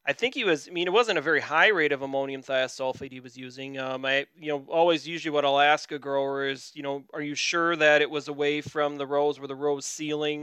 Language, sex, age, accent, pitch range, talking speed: English, male, 30-49, American, 140-165 Hz, 265 wpm